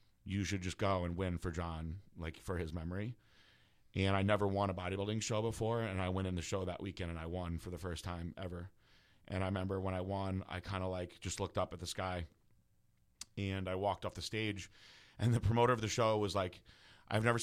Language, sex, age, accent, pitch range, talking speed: English, male, 30-49, American, 90-110 Hz, 235 wpm